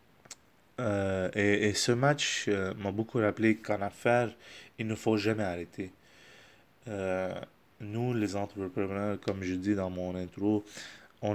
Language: French